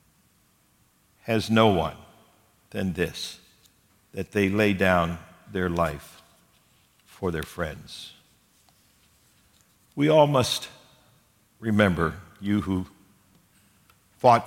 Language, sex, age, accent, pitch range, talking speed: English, male, 60-79, American, 100-110 Hz, 85 wpm